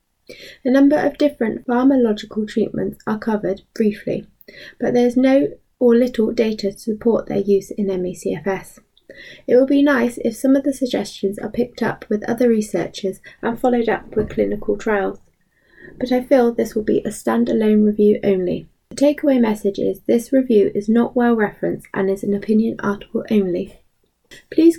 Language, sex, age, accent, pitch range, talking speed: English, female, 20-39, British, 200-255 Hz, 170 wpm